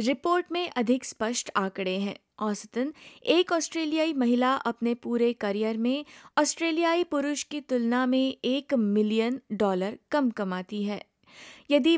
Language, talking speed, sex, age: Hindi, 130 wpm, female, 20-39